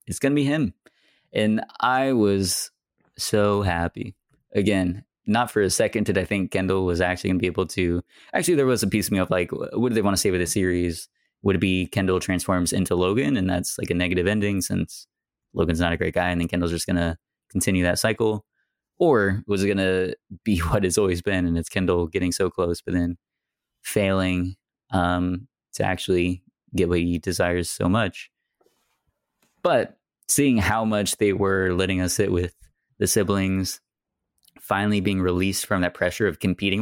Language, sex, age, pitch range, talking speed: English, male, 20-39, 90-100 Hz, 195 wpm